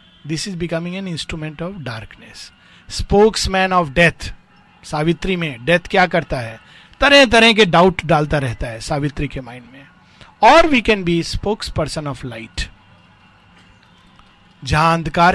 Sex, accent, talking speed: male, native, 95 wpm